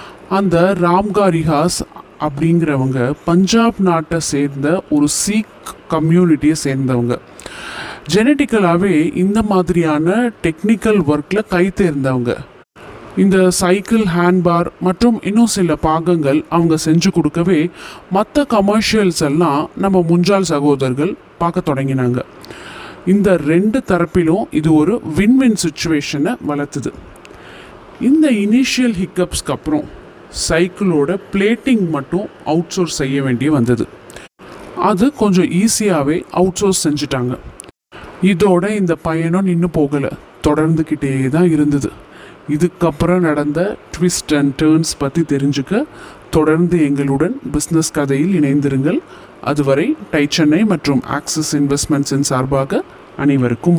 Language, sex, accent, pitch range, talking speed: Tamil, male, native, 145-190 Hz, 100 wpm